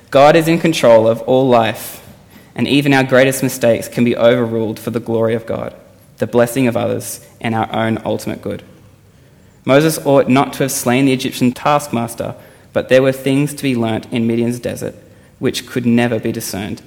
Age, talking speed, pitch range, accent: 20-39, 190 wpm, 115-140 Hz, Australian